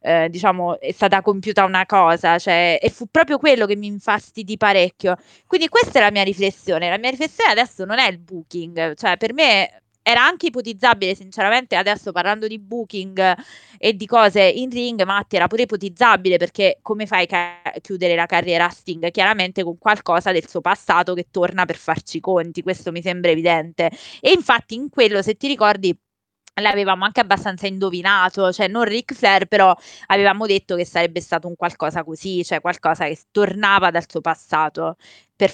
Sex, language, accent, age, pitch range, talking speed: female, Italian, native, 20-39, 175-225 Hz, 180 wpm